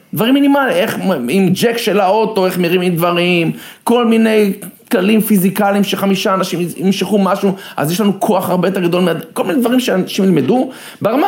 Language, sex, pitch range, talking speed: Hebrew, male, 165-215 Hz, 160 wpm